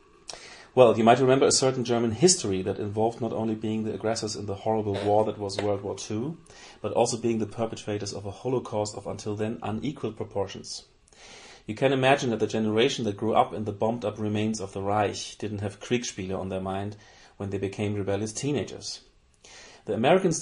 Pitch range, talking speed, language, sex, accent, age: 100-115 Hz, 195 wpm, English, male, German, 30-49